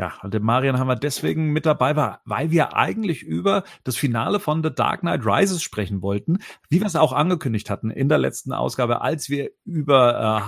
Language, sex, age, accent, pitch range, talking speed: German, male, 40-59, German, 115-150 Hz, 210 wpm